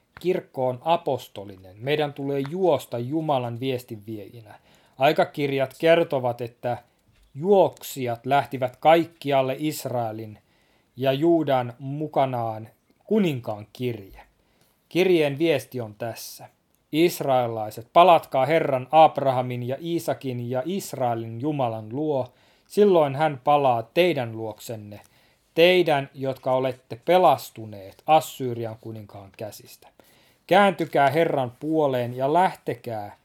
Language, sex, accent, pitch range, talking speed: Finnish, male, native, 115-150 Hz, 95 wpm